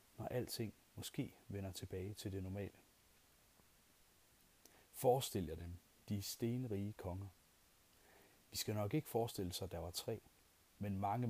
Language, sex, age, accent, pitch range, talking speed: Danish, male, 40-59, native, 95-115 Hz, 140 wpm